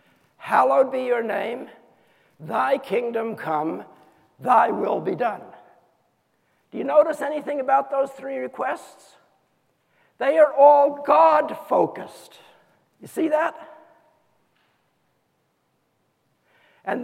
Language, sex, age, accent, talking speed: English, male, 60-79, American, 95 wpm